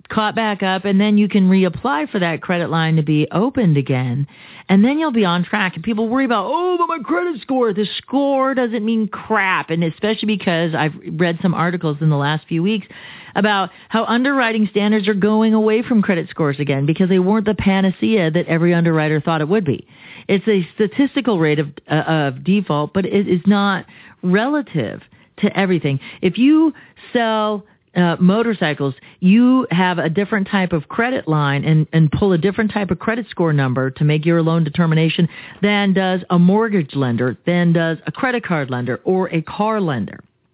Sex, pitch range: female, 165-215 Hz